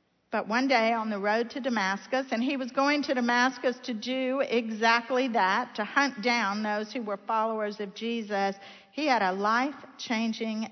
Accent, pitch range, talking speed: American, 205-255 Hz, 175 wpm